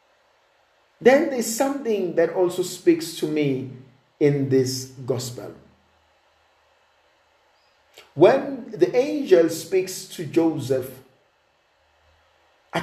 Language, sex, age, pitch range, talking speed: English, male, 50-69, 125-175 Hz, 85 wpm